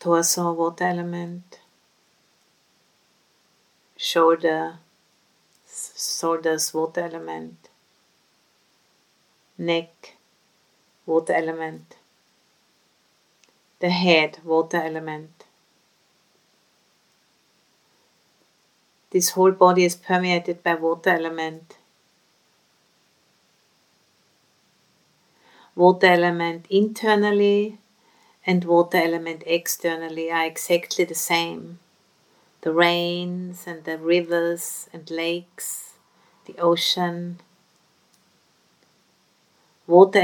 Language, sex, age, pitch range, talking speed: English, female, 50-69, 165-180 Hz, 65 wpm